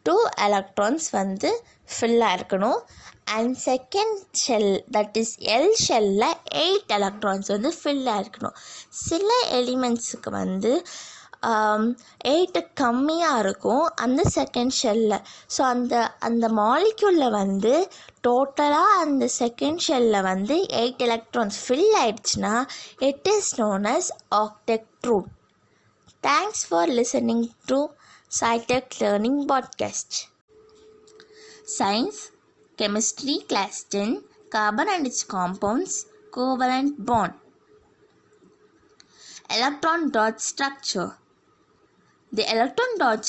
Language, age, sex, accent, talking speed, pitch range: Tamil, 20-39, female, native, 95 wpm, 215-340 Hz